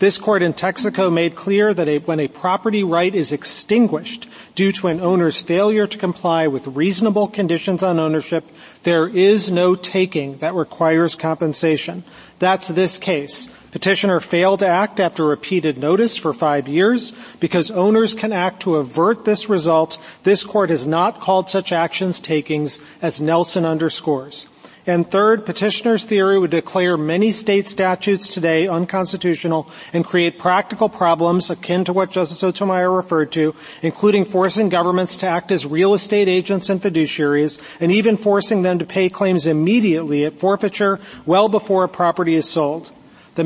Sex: male